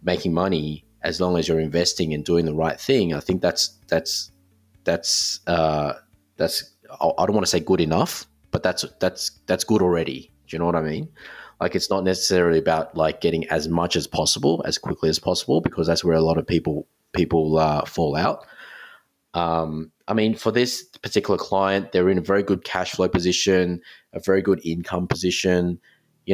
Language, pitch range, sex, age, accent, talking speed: English, 80-95 Hz, male, 20-39, Australian, 195 wpm